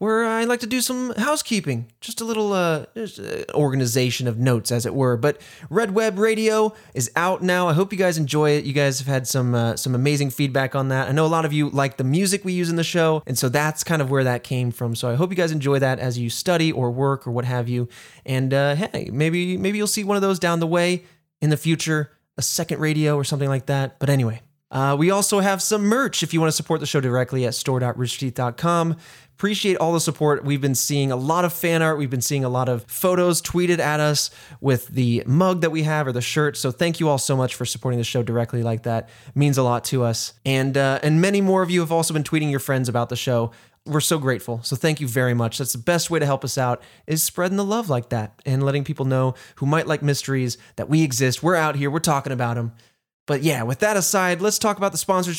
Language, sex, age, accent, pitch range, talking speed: English, male, 20-39, American, 130-170 Hz, 255 wpm